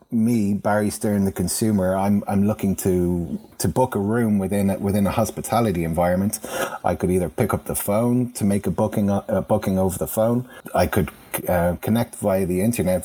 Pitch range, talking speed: 95-110 Hz, 195 wpm